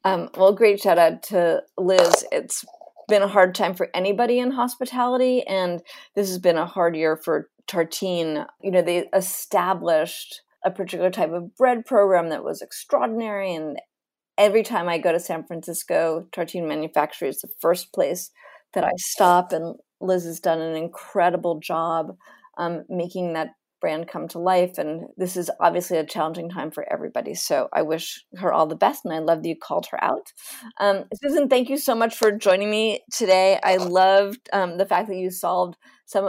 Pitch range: 175-215 Hz